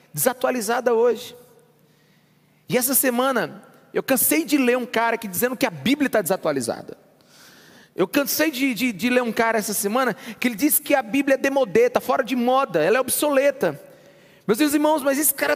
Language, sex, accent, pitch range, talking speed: Portuguese, male, Brazilian, 235-315 Hz, 185 wpm